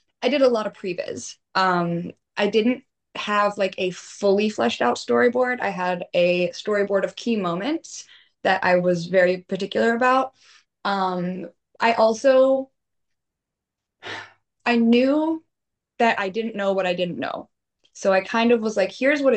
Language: English